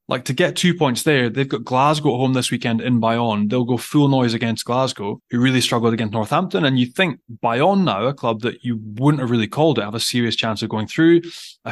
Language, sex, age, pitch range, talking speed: English, male, 20-39, 115-135 Hz, 245 wpm